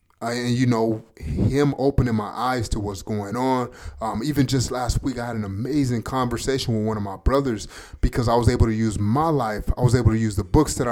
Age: 20-39